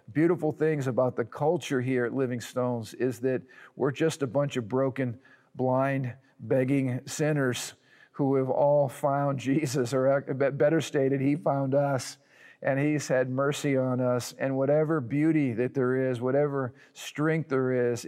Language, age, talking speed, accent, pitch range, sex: English, 50-69, 155 wpm, American, 125-140 Hz, male